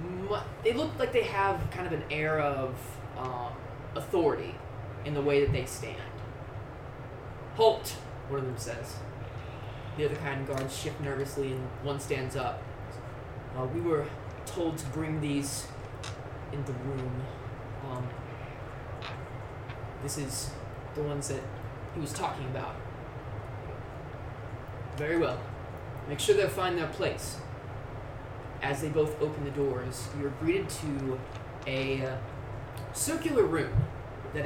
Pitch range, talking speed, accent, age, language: 115-140 Hz, 130 wpm, American, 20-39, English